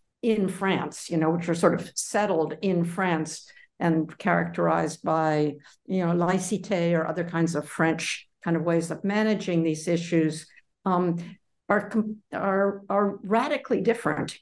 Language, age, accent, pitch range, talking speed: English, 60-79, American, 160-190 Hz, 145 wpm